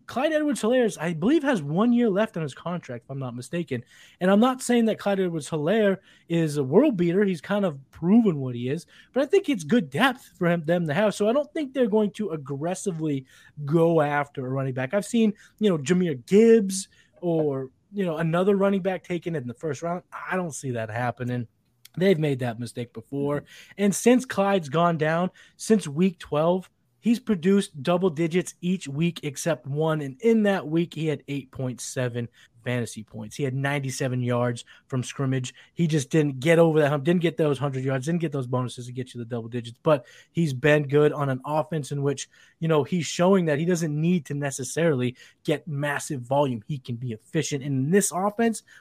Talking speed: 205 wpm